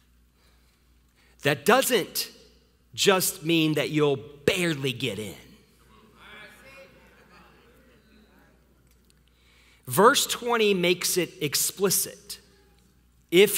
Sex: male